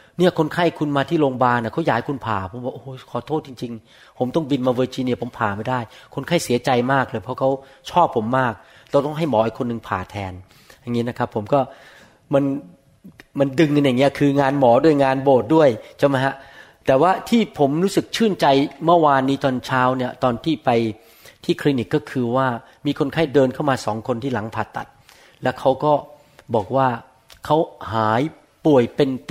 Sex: male